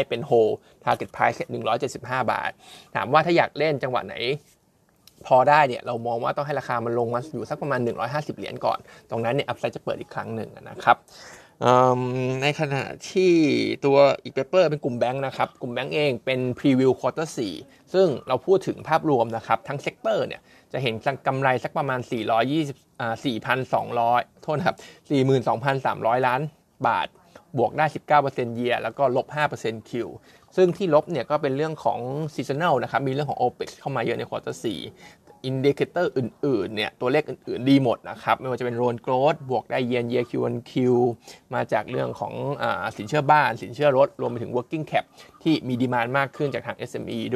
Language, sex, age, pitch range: Thai, male, 20-39, 120-150 Hz